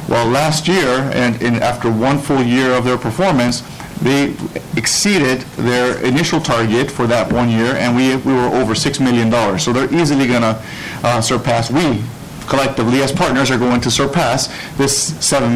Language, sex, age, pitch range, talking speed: English, male, 50-69, 120-145 Hz, 175 wpm